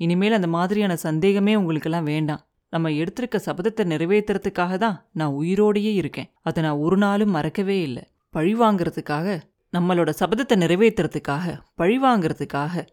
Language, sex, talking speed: Tamil, female, 115 wpm